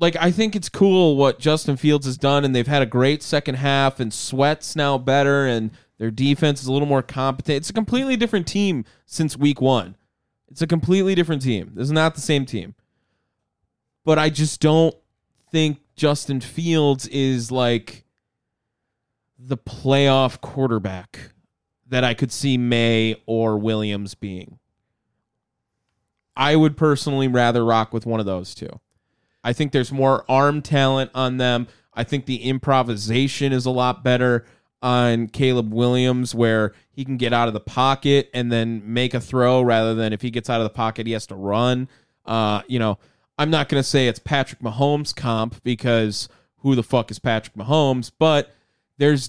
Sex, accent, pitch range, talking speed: male, American, 115-140 Hz, 175 wpm